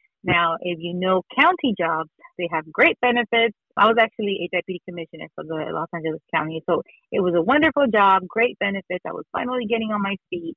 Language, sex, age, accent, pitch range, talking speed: English, female, 30-49, American, 165-200 Hz, 205 wpm